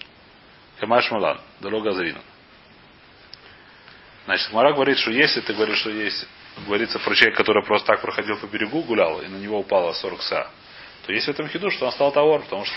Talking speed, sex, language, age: 180 wpm, male, Russian, 30-49